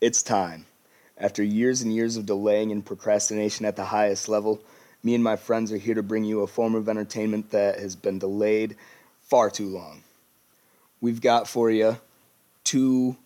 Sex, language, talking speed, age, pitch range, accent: male, English, 175 wpm, 20-39, 110-120 Hz, American